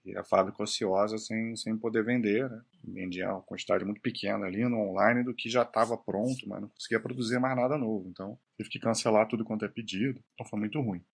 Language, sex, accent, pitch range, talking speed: Portuguese, male, Brazilian, 100-120 Hz, 215 wpm